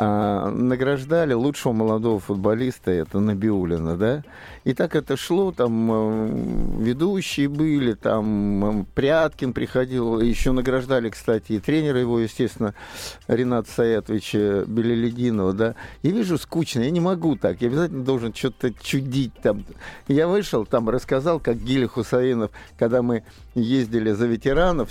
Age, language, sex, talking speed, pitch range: 50-69, Russian, male, 130 wpm, 110-135 Hz